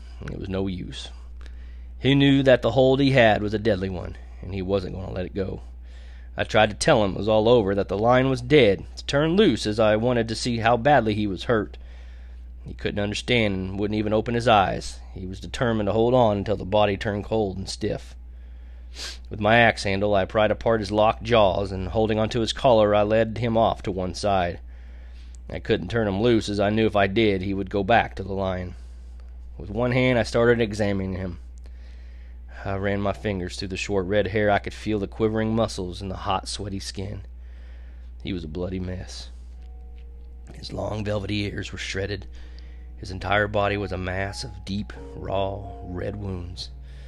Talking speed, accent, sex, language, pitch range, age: 205 wpm, American, male, English, 65-105 Hz, 30-49